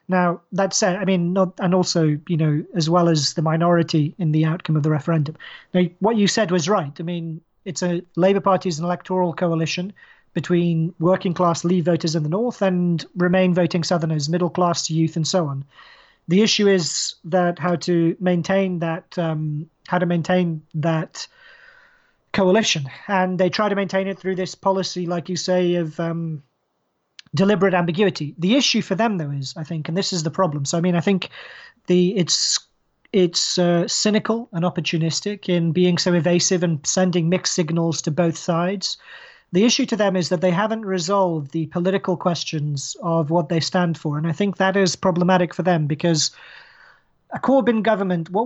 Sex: male